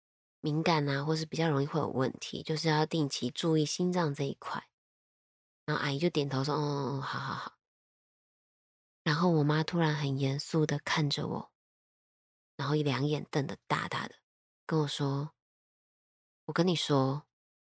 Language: Chinese